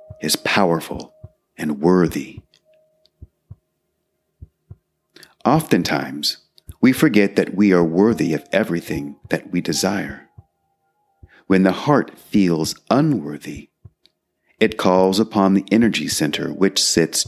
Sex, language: male, English